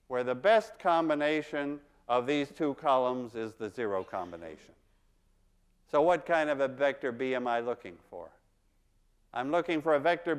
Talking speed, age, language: 160 wpm, 50-69, English